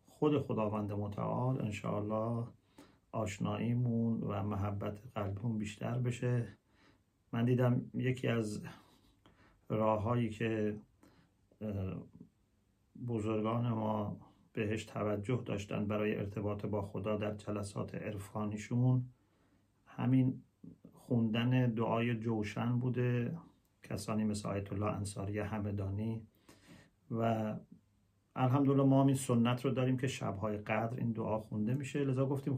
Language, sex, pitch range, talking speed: English, male, 105-130 Hz, 105 wpm